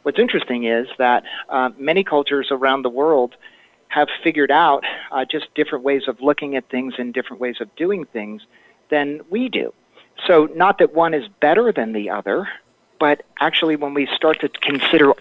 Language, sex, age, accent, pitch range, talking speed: English, male, 40-59, American, 125-150 Hz, 180 wpm